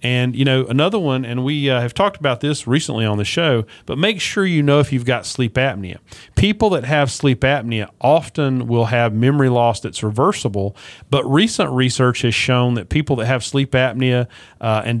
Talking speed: 205 wpm